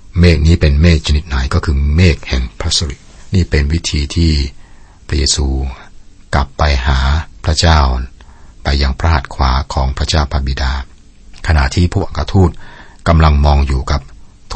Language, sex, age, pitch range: Thai, male, 60-79, 75-90 Hz